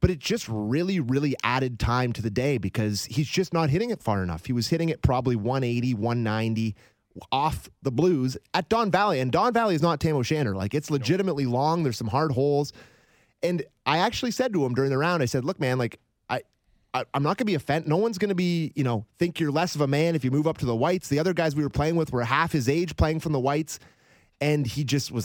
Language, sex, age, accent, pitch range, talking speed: English, male, 30-49, American, 125-165 Hz, 255 wpm